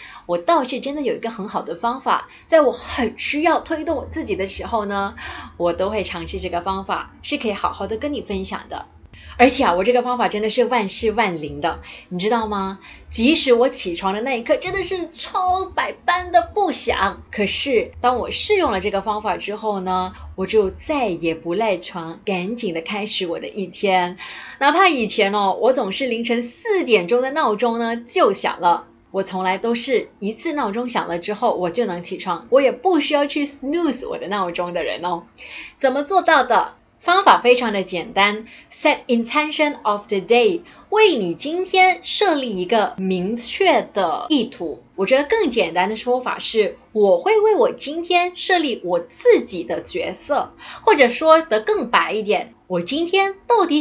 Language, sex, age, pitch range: Chinese, female, 20-39, 195-320 Hz